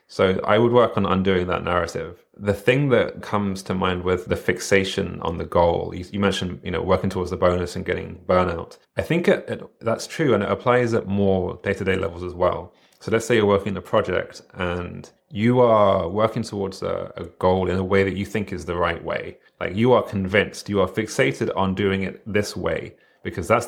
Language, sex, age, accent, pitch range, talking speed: English, male, 30-49, British, 95-110 Hz, 220 wpm